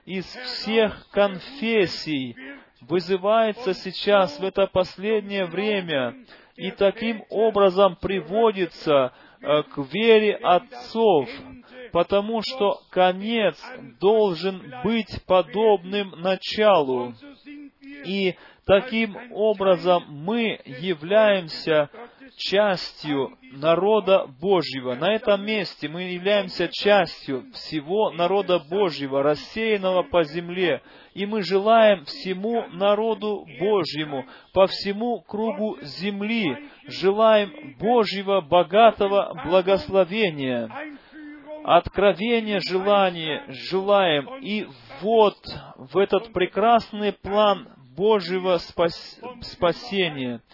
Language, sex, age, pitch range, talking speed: Romanian, male, 30-49, 175-215 Hz, 80 wpm